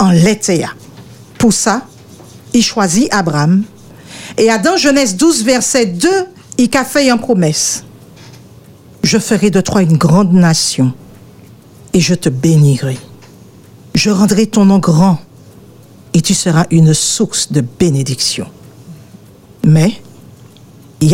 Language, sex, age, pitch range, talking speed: French, female, 50-69, 155-225 Hz, 120 wpm